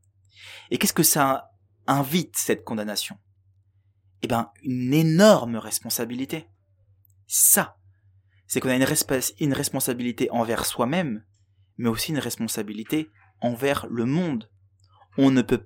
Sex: male